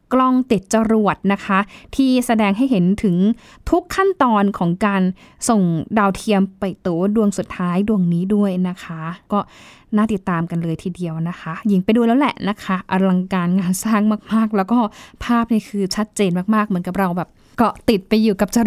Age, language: 10-29, Thai